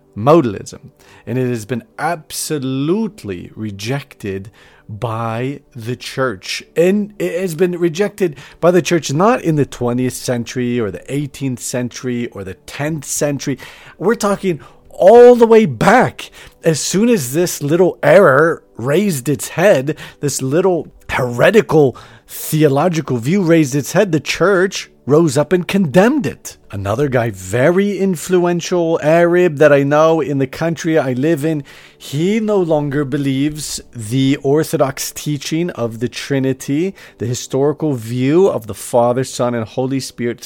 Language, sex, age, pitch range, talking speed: English, male, 40-59, 125-170 Hz, 140 wpm